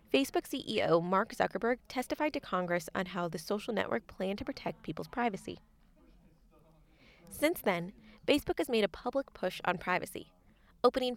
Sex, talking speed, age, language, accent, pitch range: female, 150 wpm, 20-39, English, American, 185-240 Hz